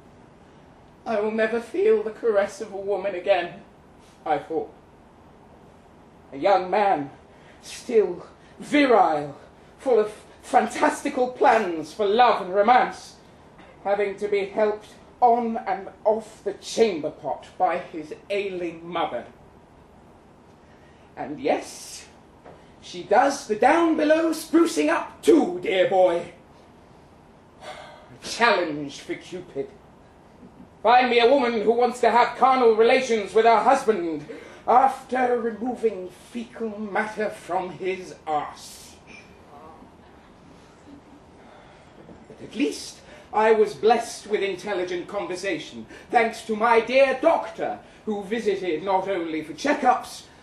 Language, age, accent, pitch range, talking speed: English, 40-59, British, 185-240 Hz, 115 wpm